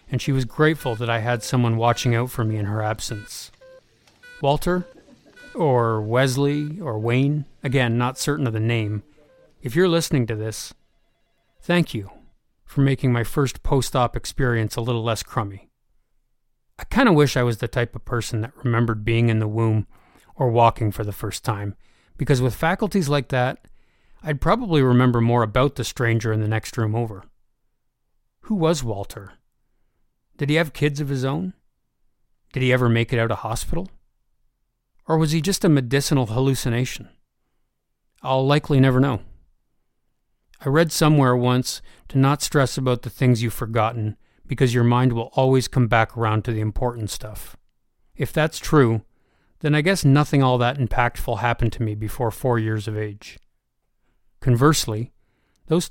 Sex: male